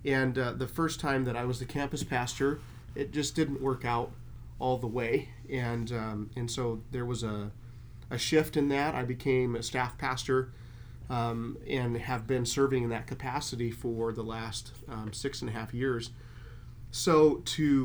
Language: English